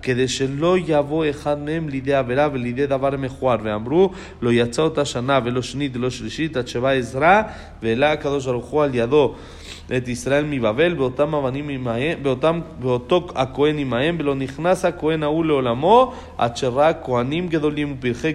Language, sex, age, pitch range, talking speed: Spanish, male, 40-59, 120-150 Hz, 140 wpm